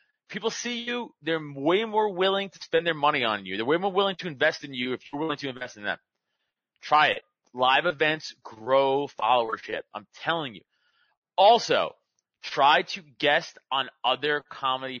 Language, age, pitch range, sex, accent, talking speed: English, 30-49, 145-215 Hz, male, American, 175 wpm